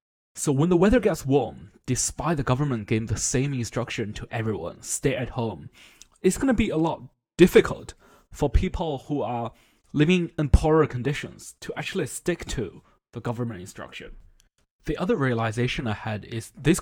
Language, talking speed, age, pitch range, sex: English, 165 wpm, 20-39, 115-155 Hz, male